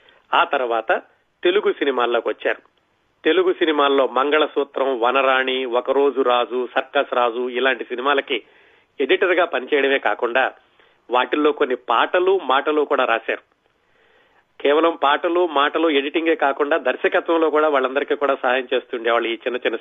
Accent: native